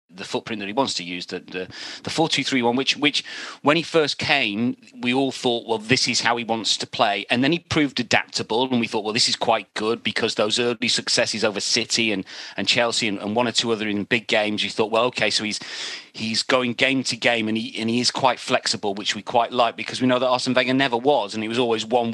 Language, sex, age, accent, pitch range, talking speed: English, male, 30-49, British, 110-135 Hz, 260 wpm